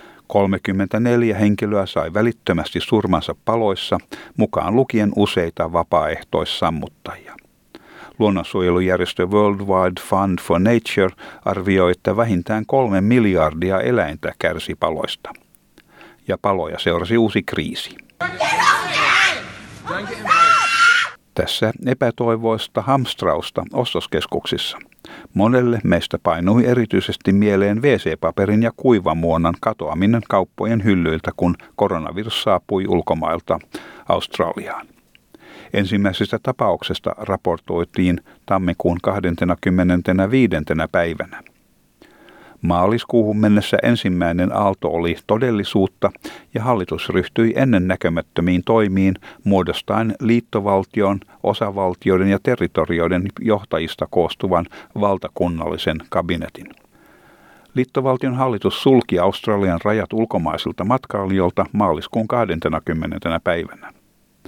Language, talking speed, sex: Finnish, 80 wpm, male